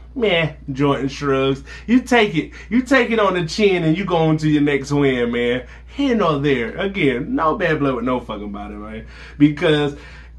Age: 20-39